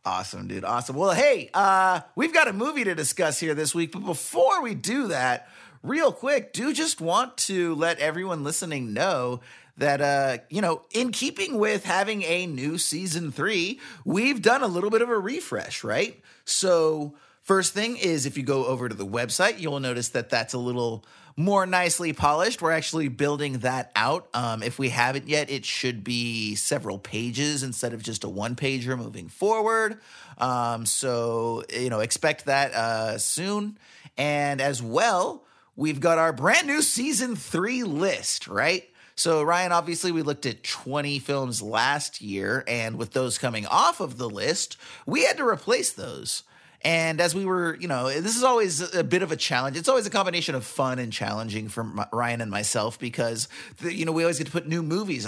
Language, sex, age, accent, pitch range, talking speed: English, male, 30-49, American, 125-180 Hz, 185 wpm